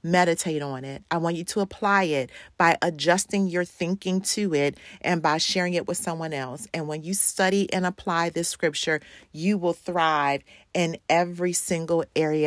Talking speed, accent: 180 wpm, American